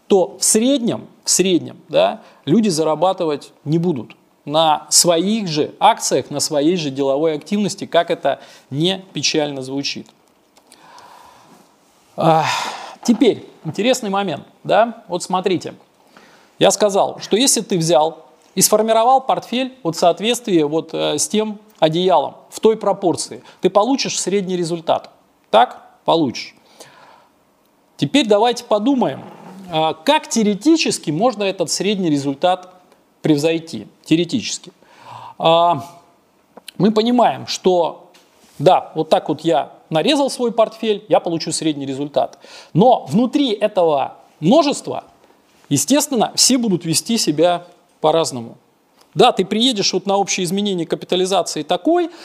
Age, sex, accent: 30-49, male, native